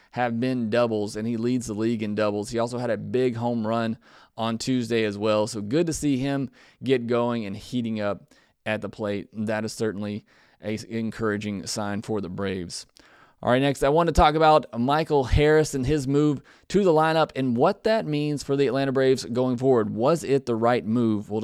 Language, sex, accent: English, male, American